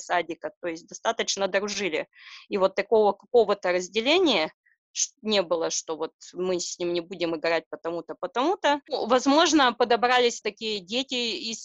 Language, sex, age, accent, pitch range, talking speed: Russian, female, 20-39, native, 185-230 Hz, 140 wpm